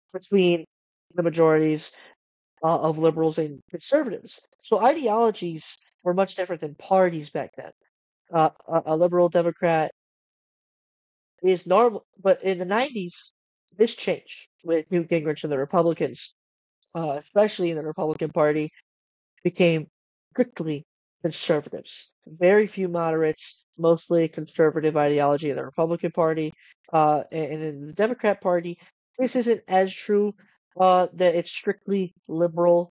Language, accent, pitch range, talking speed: English, American, 160-190 Hz, 130 wpm